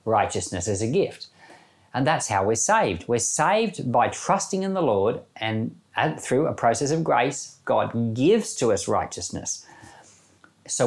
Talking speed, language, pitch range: 155 wpm, English, 105-155 Hz